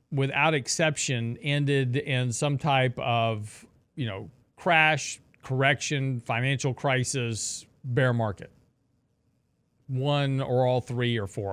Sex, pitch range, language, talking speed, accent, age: male, 120-145 Hz, English, 110 wpm, American, 40-59